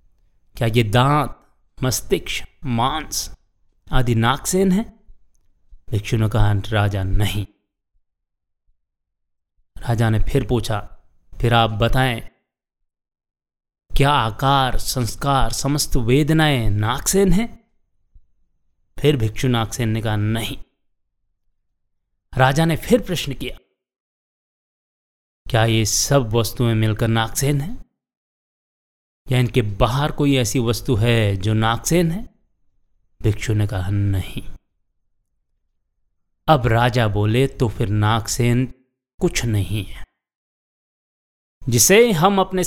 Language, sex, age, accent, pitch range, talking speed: Hindi, male, 30-49, native, 100-135 Hz, 100 wpm